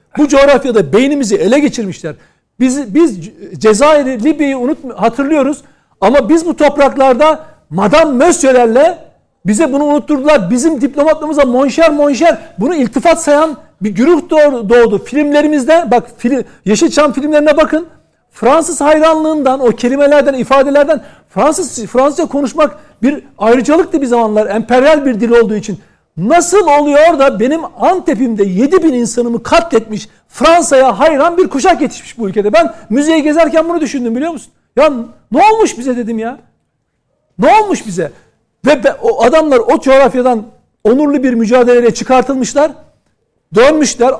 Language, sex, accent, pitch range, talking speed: Turkish, male, native, 230-300 Hz, 130 wpm